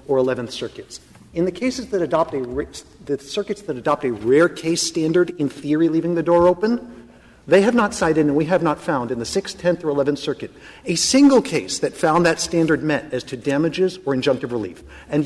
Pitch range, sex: 145-190 Hz, male